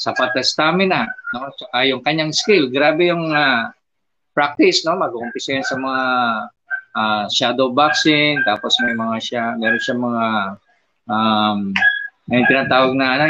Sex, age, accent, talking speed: male, 20-39, native, 135 wpm